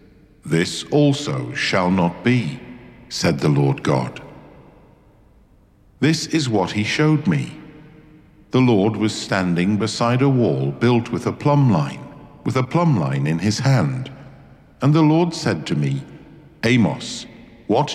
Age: 50-69